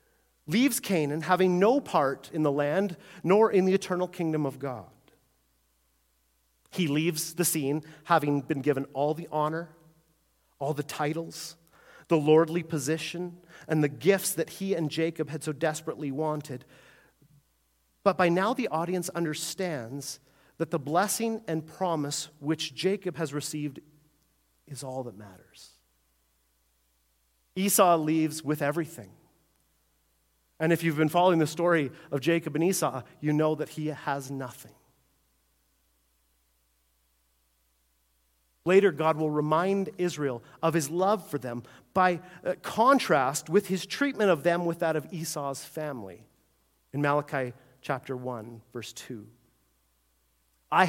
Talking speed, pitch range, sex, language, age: 130 wpm, 120-170 Hz, male, English, 40-59